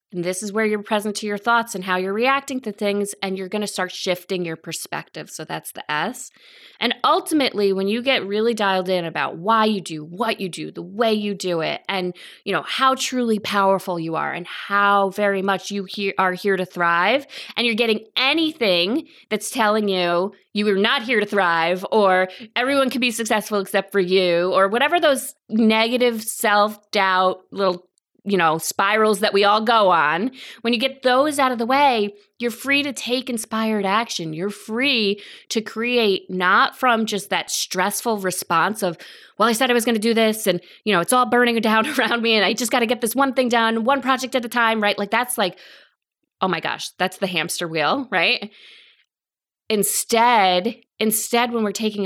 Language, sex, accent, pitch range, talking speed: English, female, American, 190-235 Hz, 200 wpm